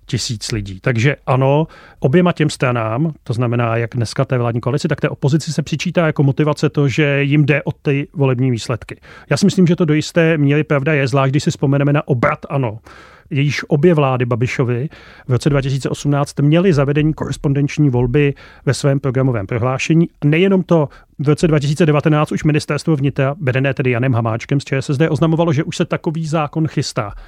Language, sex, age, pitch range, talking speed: Czech, male, 30-49, 130-150 Hz, 180 wpm